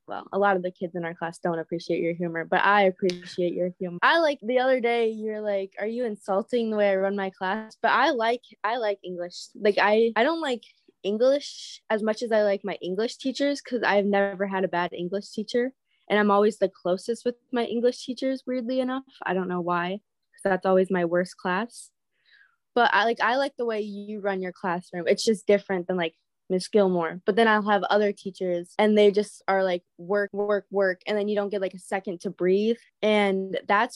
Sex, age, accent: female, 20-39, American